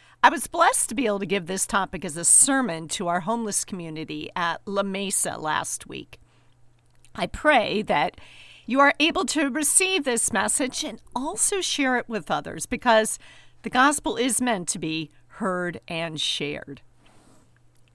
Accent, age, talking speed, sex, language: American, 50-69, 160 wpm, female, English